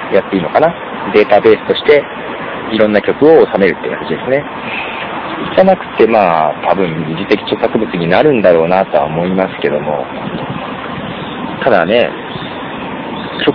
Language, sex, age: Japanese, male, 40-59